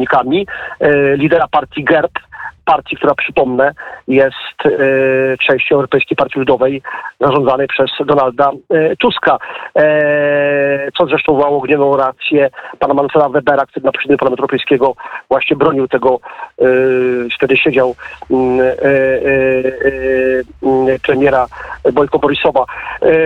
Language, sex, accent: Polish, male, native